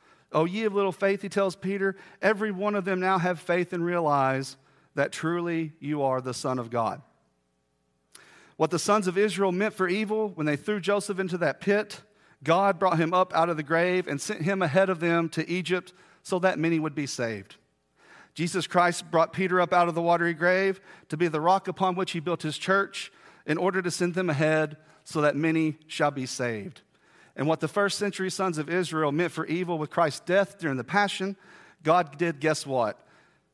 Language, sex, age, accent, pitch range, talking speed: English, male, 40-59, American, 150-185 Hz, 205 wpm